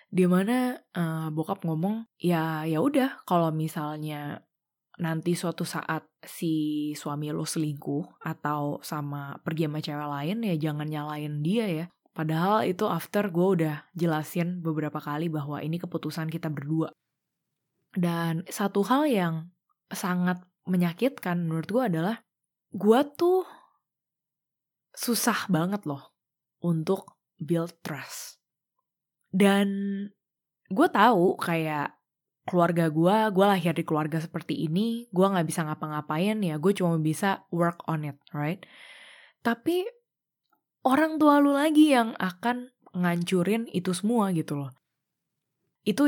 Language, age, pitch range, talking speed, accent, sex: Indonesian, 20-39, 160-210 Hz, 125 wpm, native, female